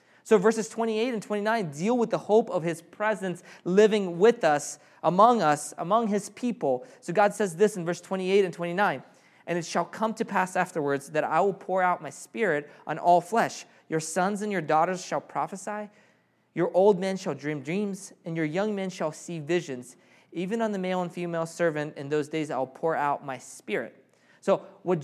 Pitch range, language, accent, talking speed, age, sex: 175-220 Hz, English, American, 200 wpm, 20-39, male